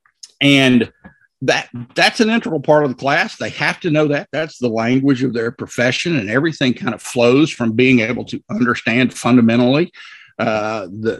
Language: English